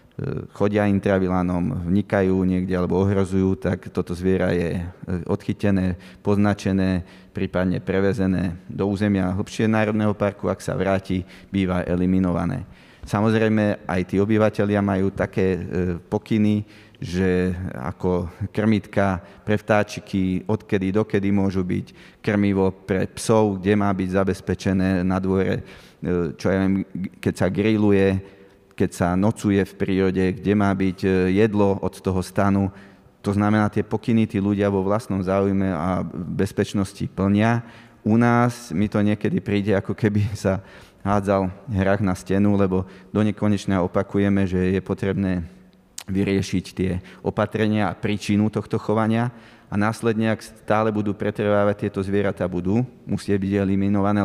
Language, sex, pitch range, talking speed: Slovak, male, 95-105 Hz, 130 wpm